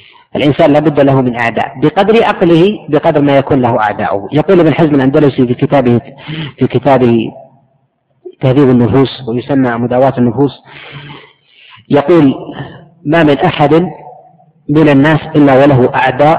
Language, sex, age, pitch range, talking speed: Arabic, female, 40-59, 130-155 Hz, 130 wpm